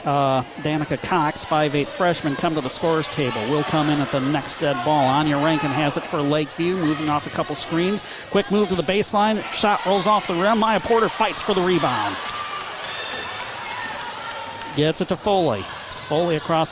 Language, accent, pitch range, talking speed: English, American, 165-215 Hz, 185 wpm